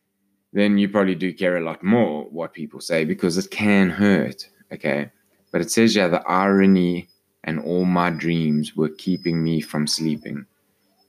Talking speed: 170 wpm